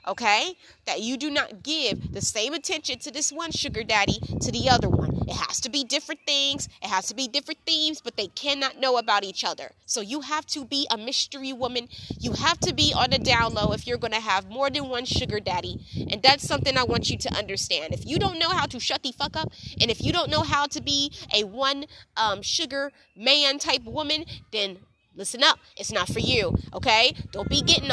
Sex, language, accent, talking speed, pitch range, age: female, English, American, 230 wpm, 230-305 Hz, 20-39